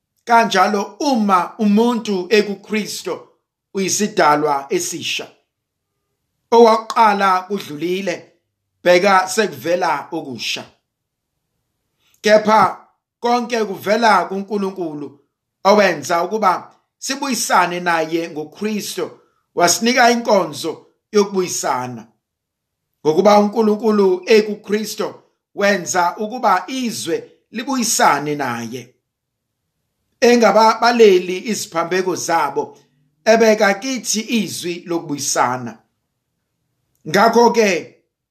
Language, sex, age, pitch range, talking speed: English, male, 50-69, 175-230 Hz, 80 wpm